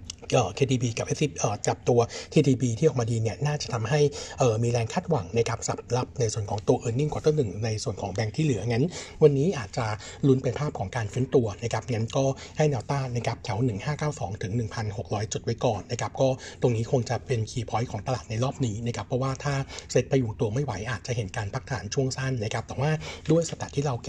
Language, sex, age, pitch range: Thai, male, 60-79, 115-140 Hz